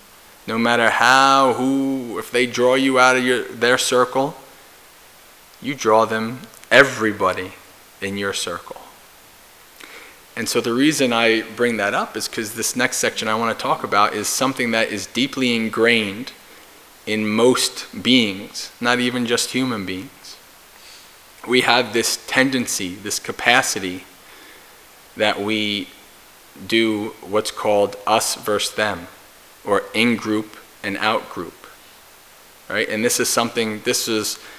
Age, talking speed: 20-39, 135 wpm